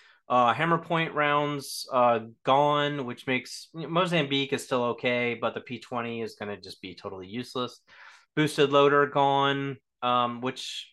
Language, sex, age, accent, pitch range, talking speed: English, male, 30-49, American, 120-145 Hz, 160 wpm